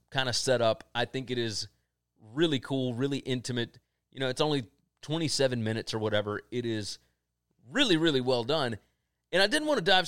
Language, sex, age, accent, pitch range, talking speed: English, male, 30-49, American, 110-155 Hz, 190 wpm